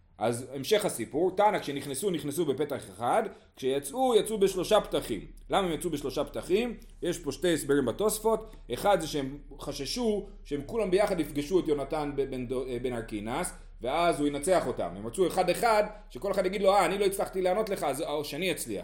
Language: Hebrew